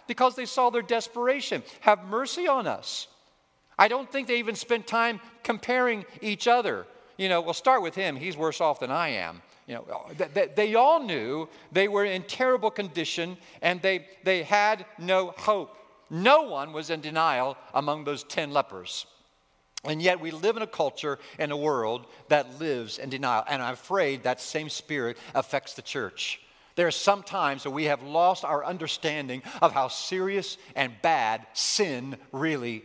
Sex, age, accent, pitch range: male, 50-69, American, 135-195 Hz